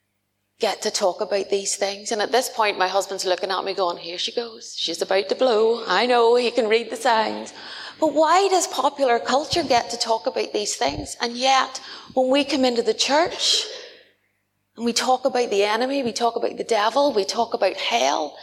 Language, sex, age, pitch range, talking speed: English, female, 30-49, 190-245 Hz, 210 wpm